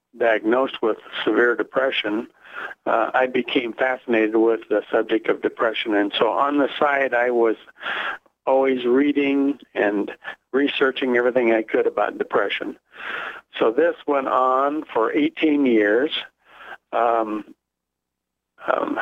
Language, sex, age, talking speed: English, male, 60-79, 120 wpm